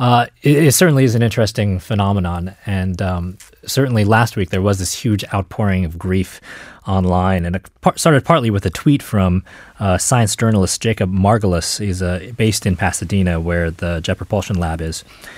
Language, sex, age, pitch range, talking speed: English, male, 30-49, 90-115 Hz, 180 wpm